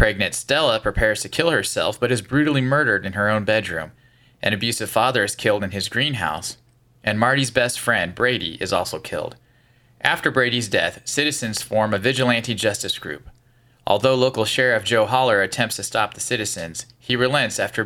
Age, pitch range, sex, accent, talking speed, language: 30-49, 105-125 Hz, male, American, 175 wpm, English